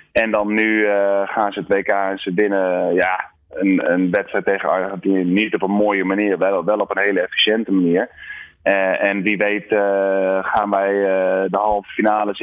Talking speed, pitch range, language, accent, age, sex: 195 wpm, 95-115 Hz, Dutch, Dutch, 20-39, male